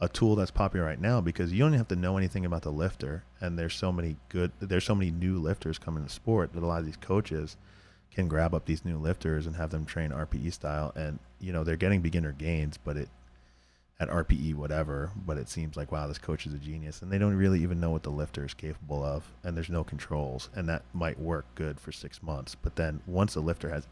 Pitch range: 75-90 Hz